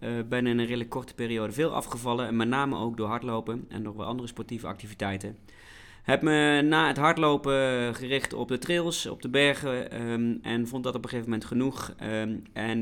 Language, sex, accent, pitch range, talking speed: Dutch, male, Dutch, 105-130 Hz, 205 wpm